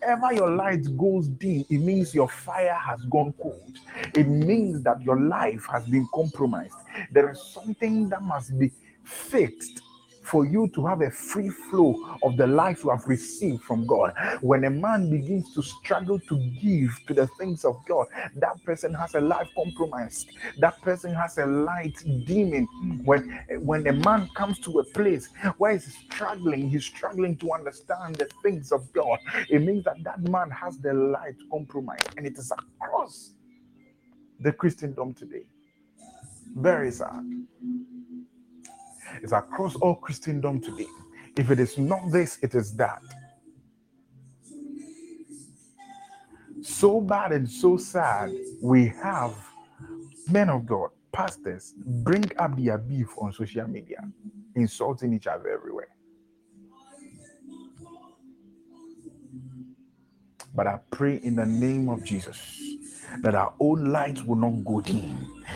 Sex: male